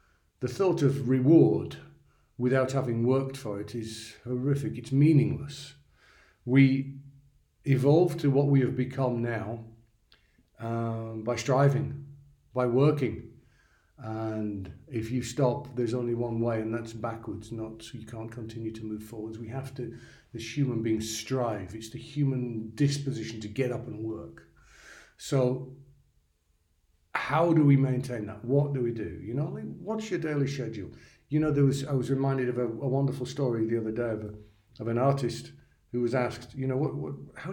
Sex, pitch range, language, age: male, 115-140 Hz, English, 50-69